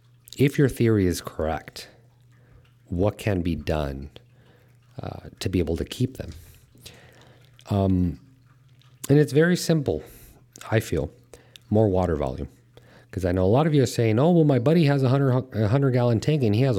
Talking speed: 170 wpm